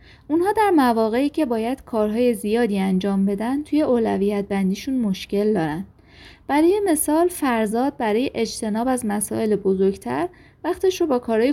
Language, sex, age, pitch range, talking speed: Persian, female, 20-39, 195-300 Hz, 135 wpm